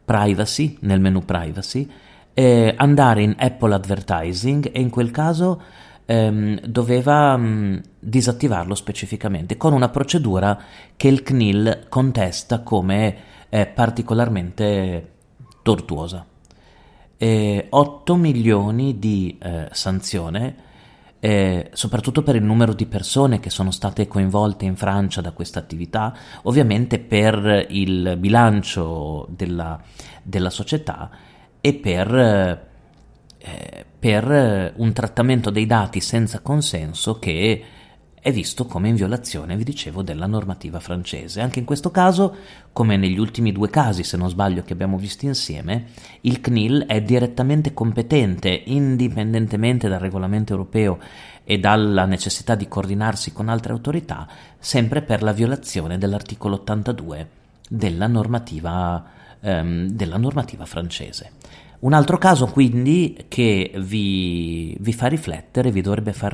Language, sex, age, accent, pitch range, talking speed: Italian, male, 30-49, native, 95-125 Hz, 125 wpm